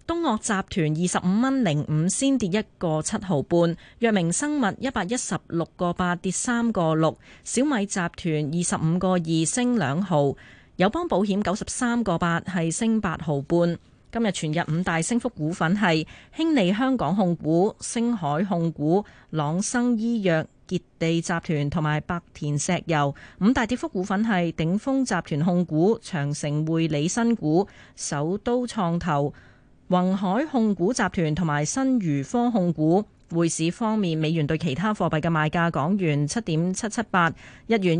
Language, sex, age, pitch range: Chinese, female, 30-49, 160-215 Hz